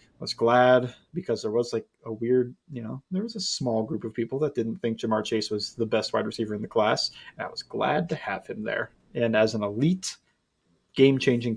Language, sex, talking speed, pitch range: English, male, 230 wpm, 115-150 Hz